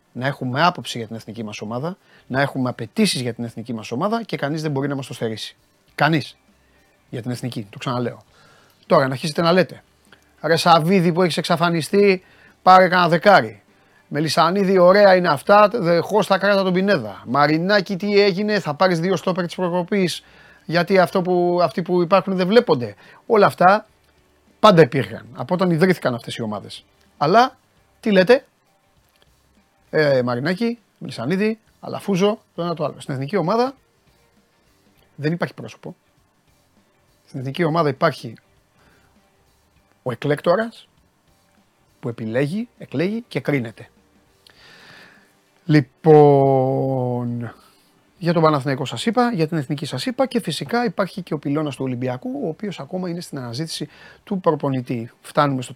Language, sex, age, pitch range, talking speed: Greek, male, 30-49, 130-190 Hz, 145 wpm